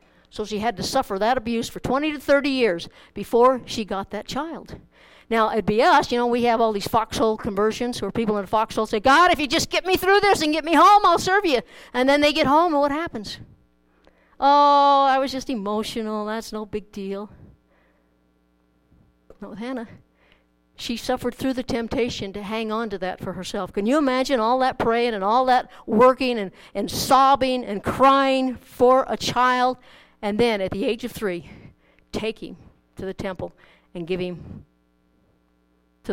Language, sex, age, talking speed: English, female, 60-79, 195 wpm